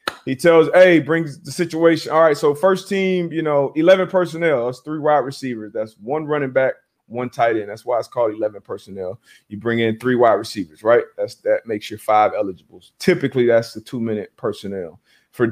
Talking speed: 200 wpm